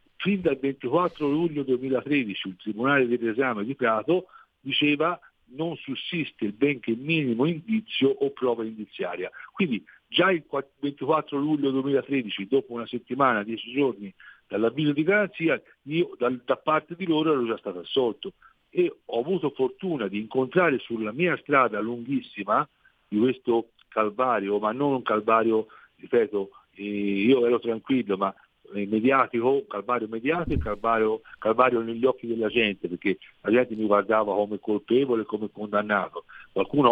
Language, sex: Italian, male